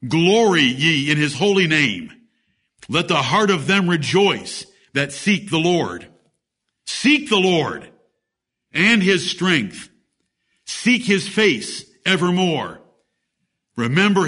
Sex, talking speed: male, 115 wpm